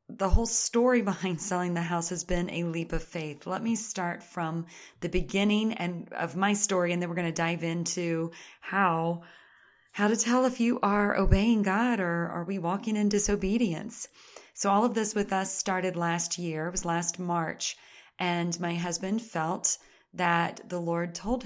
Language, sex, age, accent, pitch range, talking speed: English, female, 30-49, American, 170-205 Hz, 185 wpm